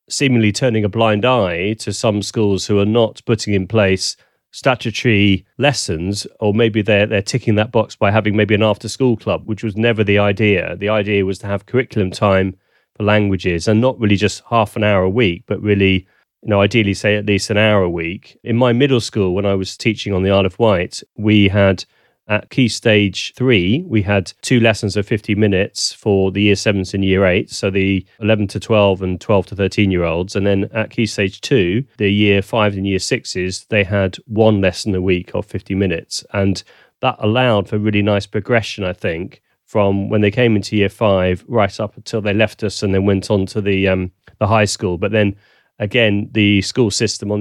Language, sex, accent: English, male, British